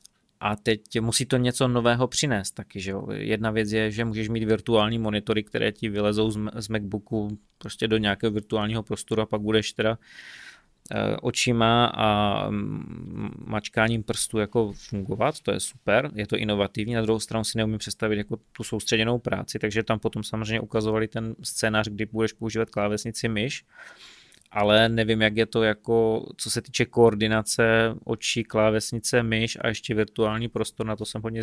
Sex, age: male, 20-39